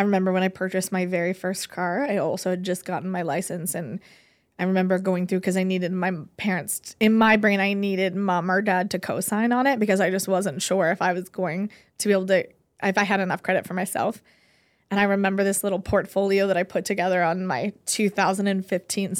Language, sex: English, female